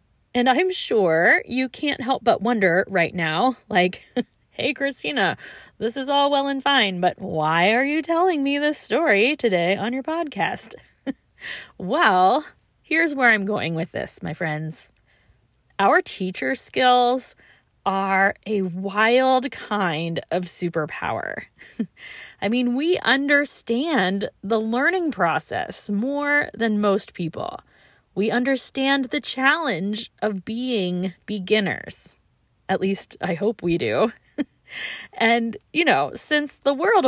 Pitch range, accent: 190-275 Hz, American